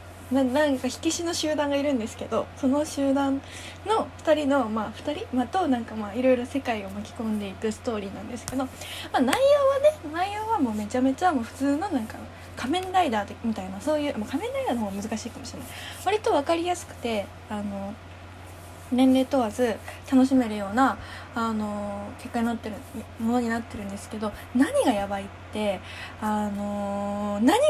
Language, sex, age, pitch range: Japanese, female, 20-39, 215-295 Hz